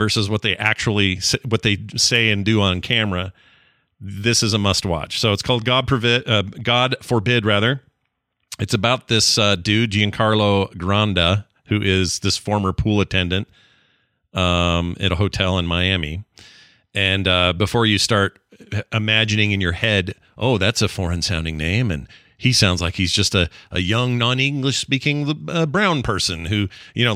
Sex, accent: male, American